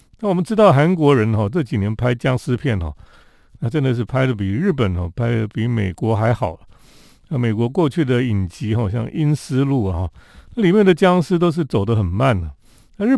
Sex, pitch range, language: male, 105-155 Hz, Chinese